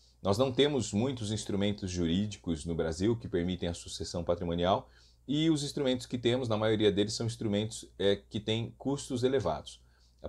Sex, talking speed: male, 165 wpm